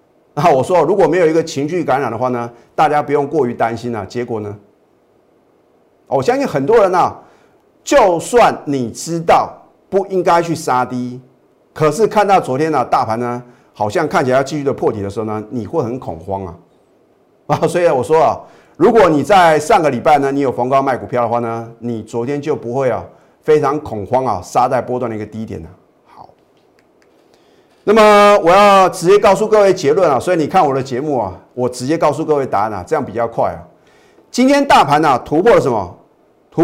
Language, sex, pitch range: Chinese, male, 120-185 Hz